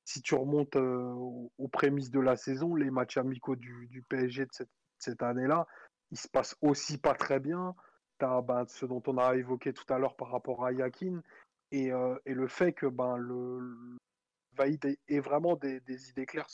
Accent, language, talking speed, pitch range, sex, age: French, French, 210 wpm, 125-140 Hz, male, 20-39